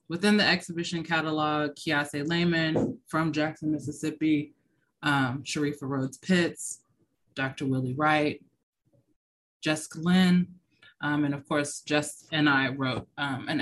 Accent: American